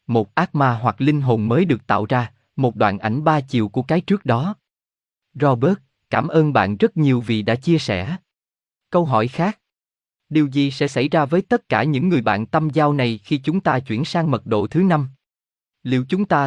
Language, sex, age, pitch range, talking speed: Vietnamese, male, 20-39, 115-160 Hz, 210 wpm